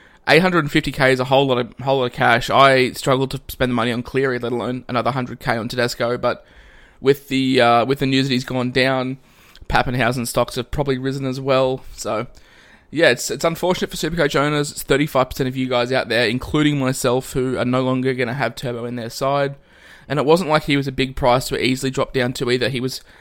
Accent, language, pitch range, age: Australian, English, 125-135 Hz, 20-39